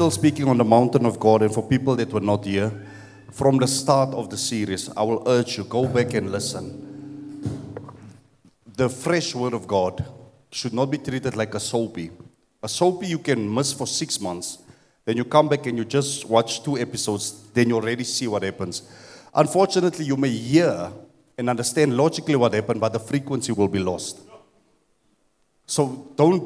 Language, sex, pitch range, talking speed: English, male, 115-145 Hz, 180 wpm